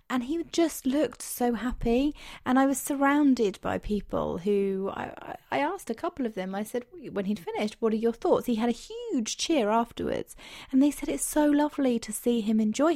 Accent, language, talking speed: British, English, 210 wpm